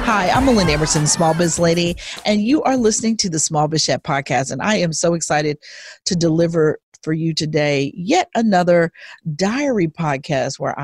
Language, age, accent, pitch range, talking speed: English, 40-59, American, 155-185 Hz, 170 wpm